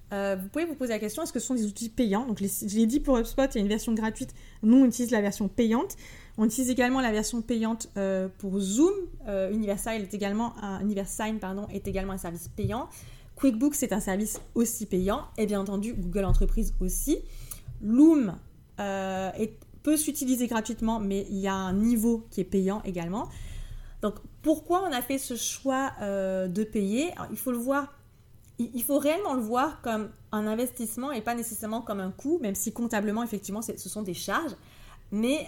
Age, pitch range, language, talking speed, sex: 30-49, 200-245 Hz, French, 205 wpm, female